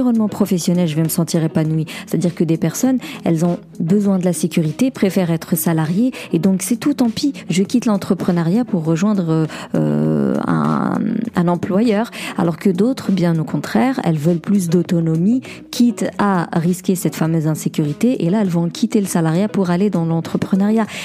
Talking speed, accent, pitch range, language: 175 wpm, French, 170-205 Hz, French